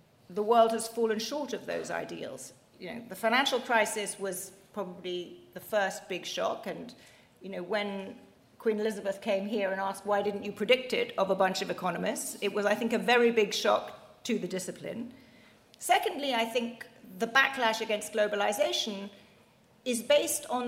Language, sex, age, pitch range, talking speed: English, female, 40-59, 195-235 Hz, 175 wpm